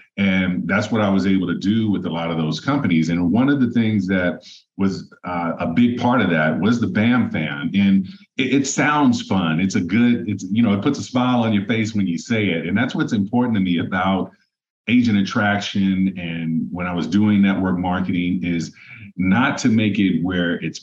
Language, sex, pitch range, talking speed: English, male, 90-140 Hz, 220 wpm